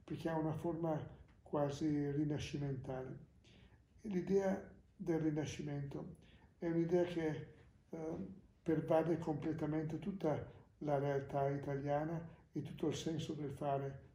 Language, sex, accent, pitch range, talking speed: Italian, male, native, 145-175 Hz, 105 wpm